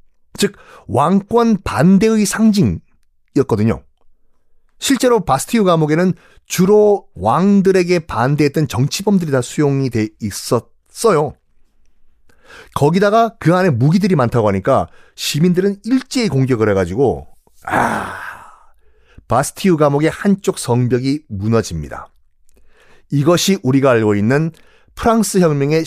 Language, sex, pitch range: Korean, male, 120-185 Hz